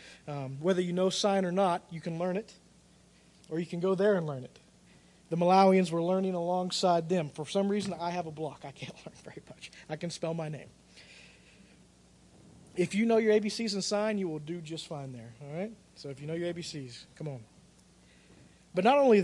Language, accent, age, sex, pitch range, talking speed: English, American, 40-59, male, 155-185 Hz, 210 wpm